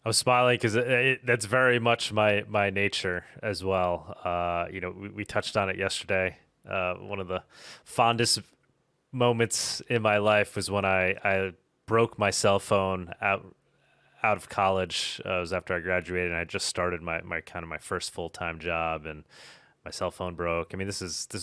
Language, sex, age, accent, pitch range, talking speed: English, male, 30-49, American, 90-110 Hz, 205 wpm